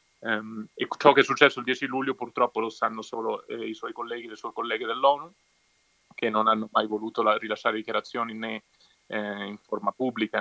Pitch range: 110-125 Hz